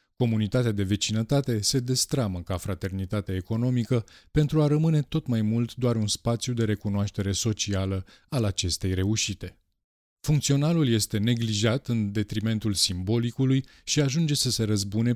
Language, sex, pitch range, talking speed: Romanian, male, 95-120 Hz, 135 wpm